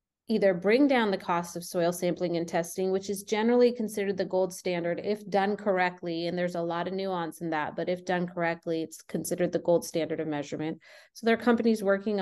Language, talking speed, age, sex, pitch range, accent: English, 215 wpm, 30-49, female, 175-210 Hz, American